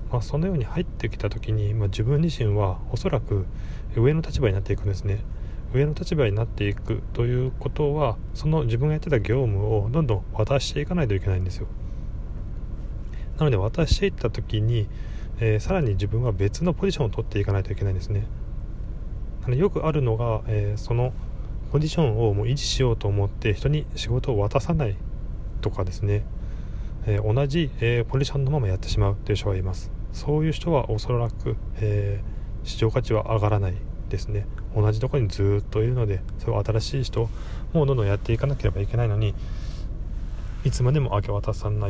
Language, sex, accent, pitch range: Japanese, male, native, 100-125 Hz